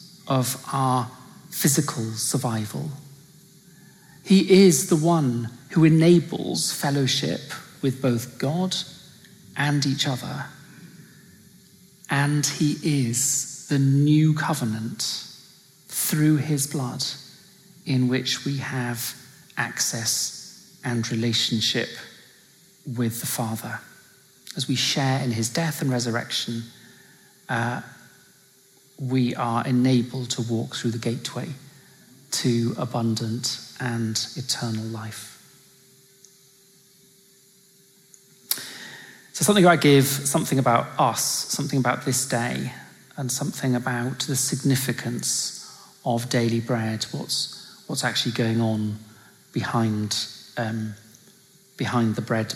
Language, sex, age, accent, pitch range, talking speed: English, male, 40-59, British, 120-165 Hz, 100 wpm